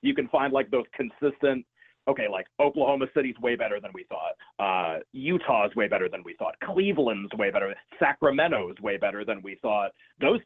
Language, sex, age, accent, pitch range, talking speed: English, male, 30-49, American, 120-145 Hz, 185 wpm